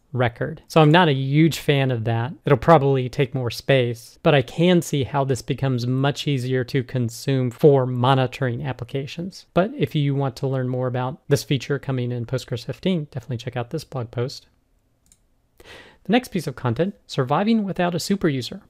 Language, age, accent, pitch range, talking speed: English, 40-59, American, 125-155 Hz, 185 wpm